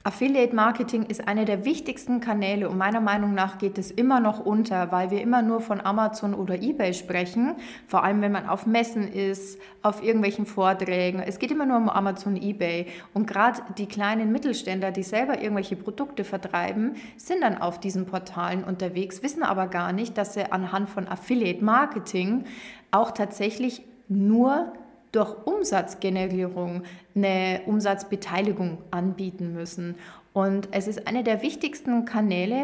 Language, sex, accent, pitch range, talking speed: German, female, German, 185-230 Hz, 150 wpm